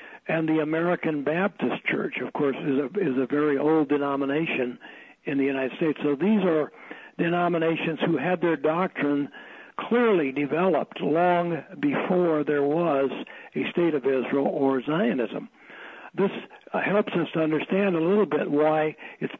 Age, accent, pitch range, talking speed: 60-79, American, 145-175 Hz, 145 wpm